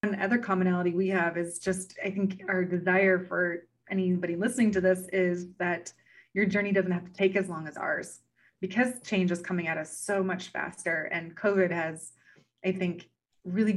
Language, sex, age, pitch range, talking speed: English, female, 20-39, 170-190 Hz, 185 wpm